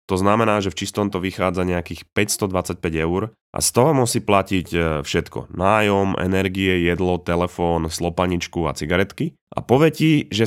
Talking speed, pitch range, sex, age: 150 wpm, 85-110 Hz, male, 30-49